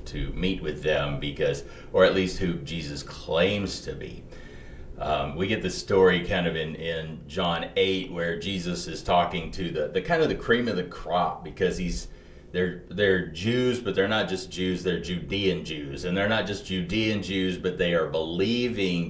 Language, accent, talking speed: English, American, 190 wpm